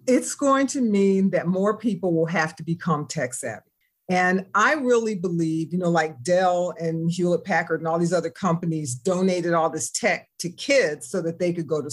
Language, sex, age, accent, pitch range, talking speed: English, female, 50-69, American, 165-200 Hz, 205 wpm